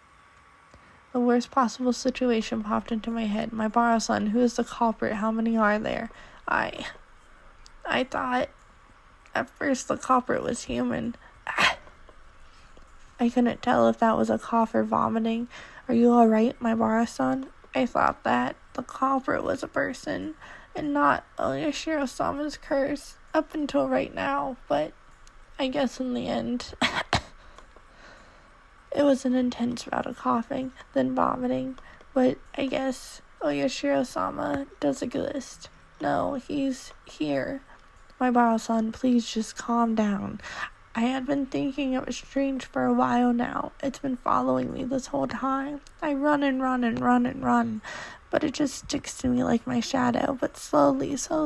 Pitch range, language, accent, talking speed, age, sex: 235-280 Hz, English, American, 150 wpm, 20-39, female